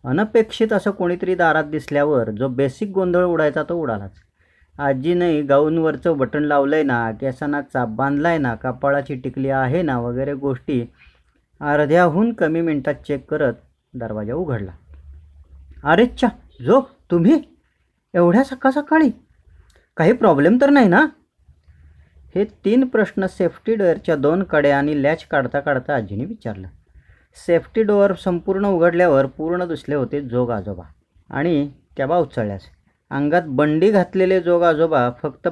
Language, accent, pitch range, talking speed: Marathi, native, 130-180 Hz, 130 wpm